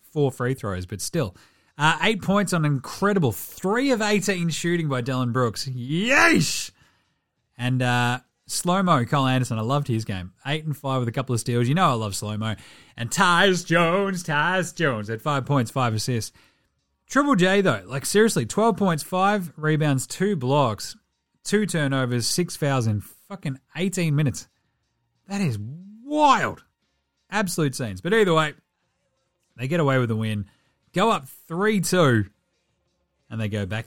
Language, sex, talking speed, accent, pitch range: English, male, 160 wpm, Australian, 125-190 Hz